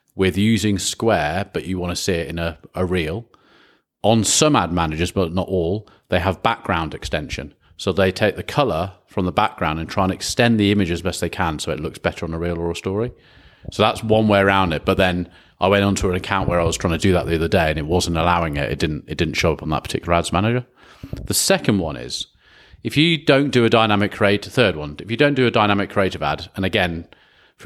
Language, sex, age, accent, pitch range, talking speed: English, male, 30-49, British, 85-105 Hz, 250 wpm